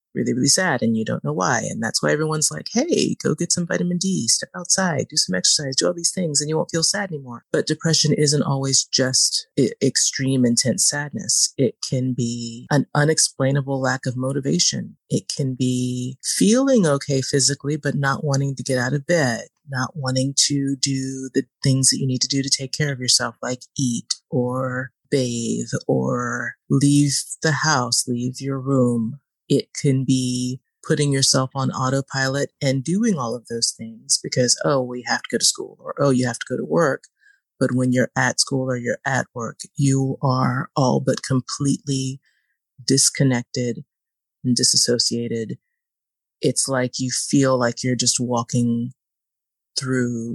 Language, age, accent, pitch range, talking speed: English, 30-49, American, 125-145 Hz, 175 wpm